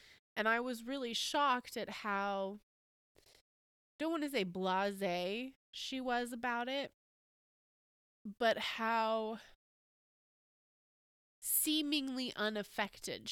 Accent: American